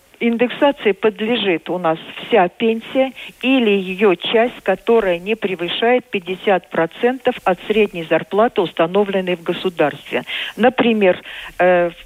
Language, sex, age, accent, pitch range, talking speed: Russian, female, 50-69, native, 185-230 Hz, 105 wpm